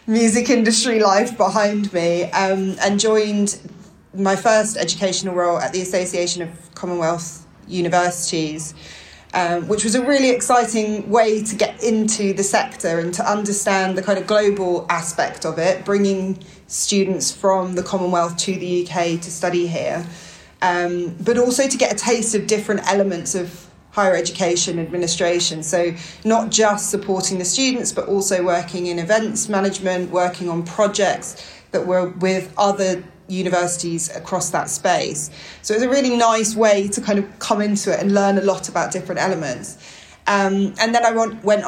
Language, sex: English, female